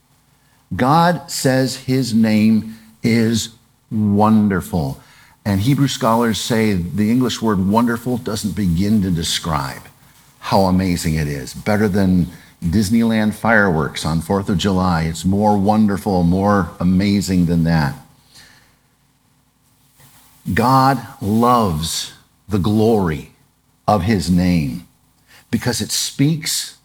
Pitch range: 105-140 Hz